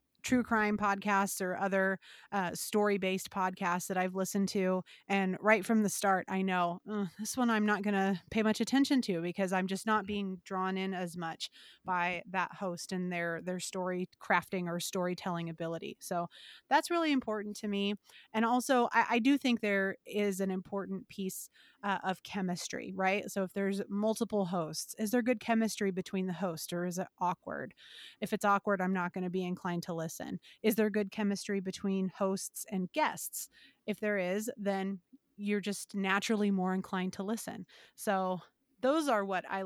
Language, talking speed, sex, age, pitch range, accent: English, 185 wpm, female, 30-49, 185-215 Hz, American